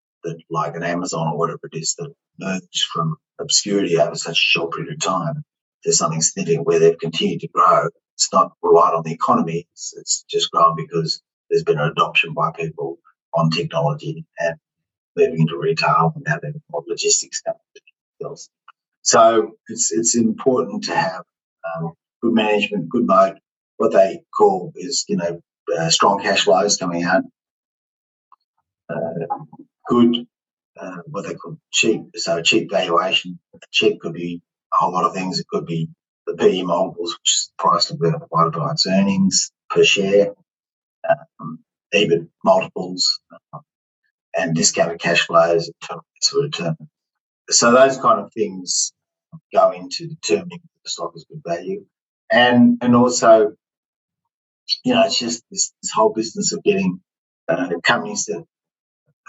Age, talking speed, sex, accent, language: 30-49, 155 wpm, male, Australian, English